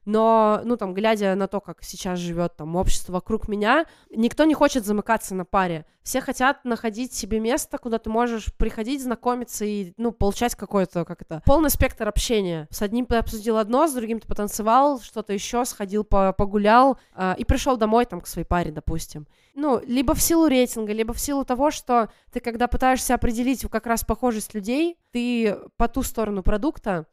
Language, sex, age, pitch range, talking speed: Russian, female, 20-39, 200-245 Hz, 185 wpm